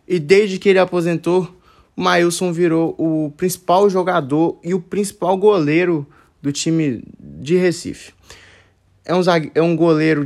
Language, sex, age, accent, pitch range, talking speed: Portuguese, male, 20-39, Brazilian, 130-175 Hz, 130 wpm